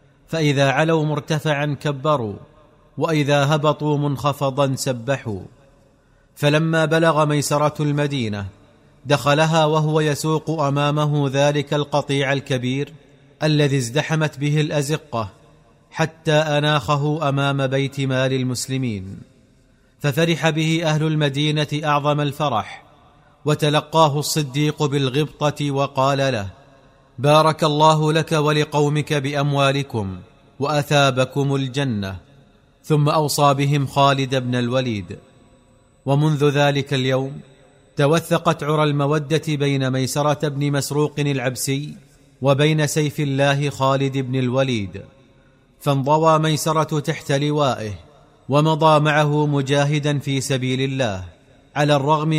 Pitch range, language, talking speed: 135-150 Hz, Arabic, 95 wpm